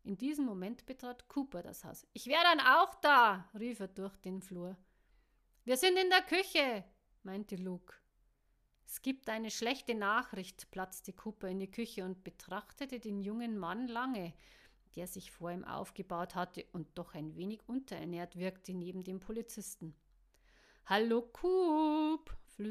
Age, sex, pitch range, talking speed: 50-69, female, 185-250 Hz, 150 wpm